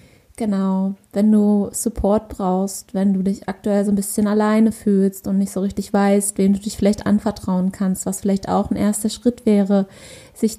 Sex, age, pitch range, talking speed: female, 20-39, 195-215 Hz, 185 wpm